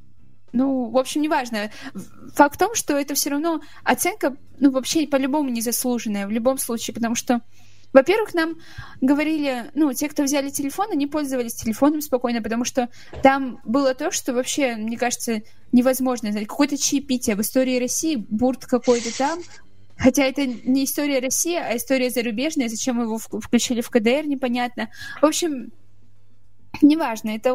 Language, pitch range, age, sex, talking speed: Russian, 240-280 Hz, 20-39, female, 155 wpm